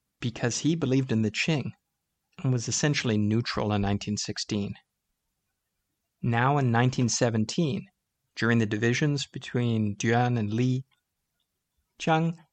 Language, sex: English, male